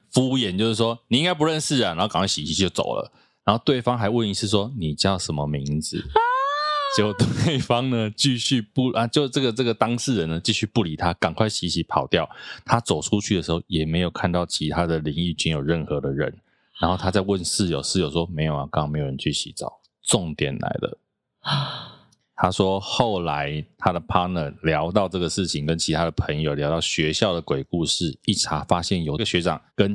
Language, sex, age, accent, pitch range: Chinese, male, 20-39, native, 80-110 Hz